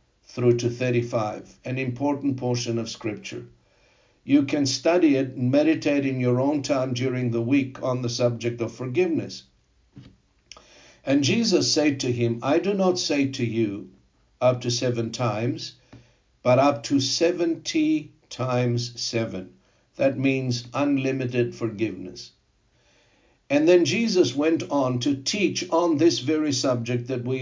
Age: 60-79